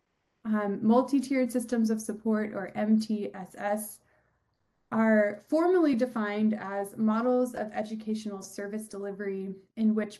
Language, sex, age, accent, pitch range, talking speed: English, female, 20-39, American, 205-235 Hz, 105 wpm